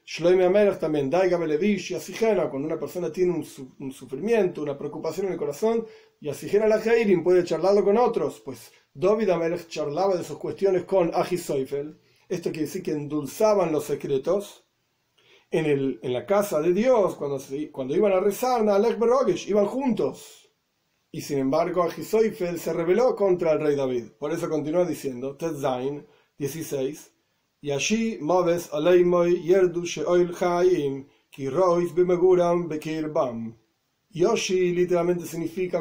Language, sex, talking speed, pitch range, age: Spanish, male, 130 wpm, 150-195 Hz, 40-59